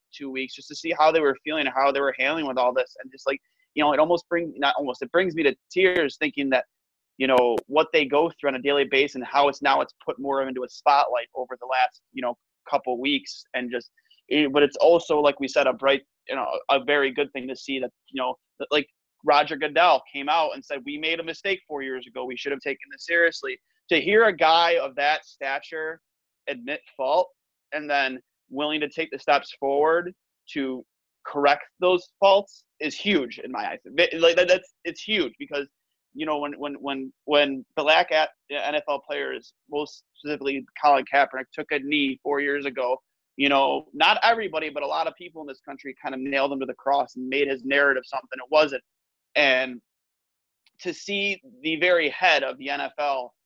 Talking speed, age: 210 wpm, 30-49